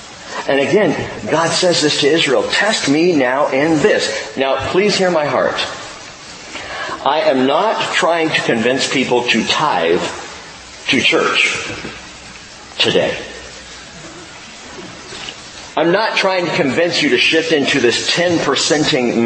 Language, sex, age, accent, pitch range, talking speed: English, male, 40-59, American, 100-135 Hz, 125 wpm